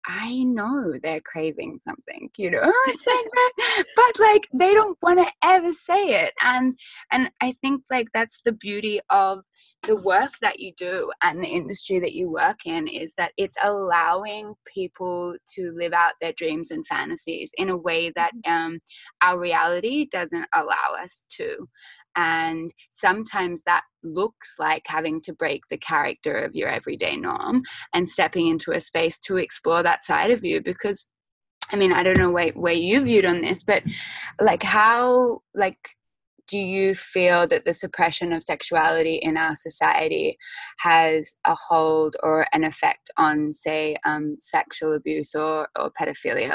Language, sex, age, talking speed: English, female, 10-29, 160 wpm